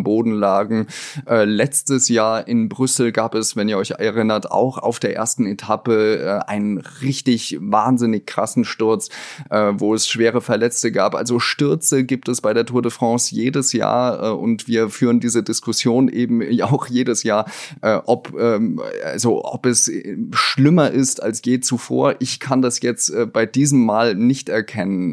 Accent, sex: German, male